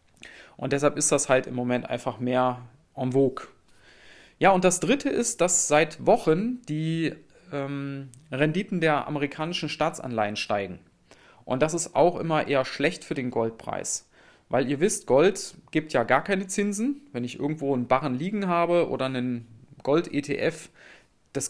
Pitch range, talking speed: 130-170 Hz, 155 wpm